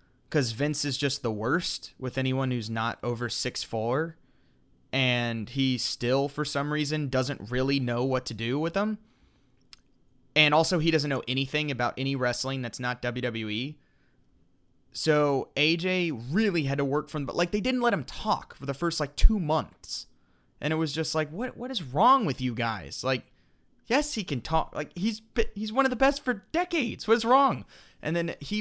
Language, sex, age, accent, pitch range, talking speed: English, male, 20-39, American, 125-170 Hz, 190 wpm